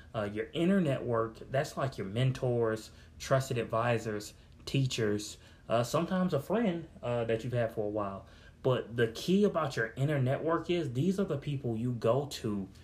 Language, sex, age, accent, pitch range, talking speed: English, male, 30-49, American, 110-140 Hz, 175 wpm